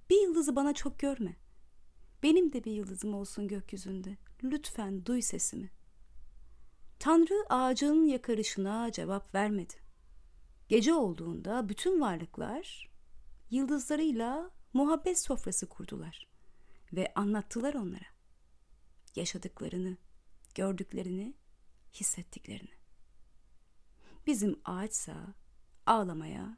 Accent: native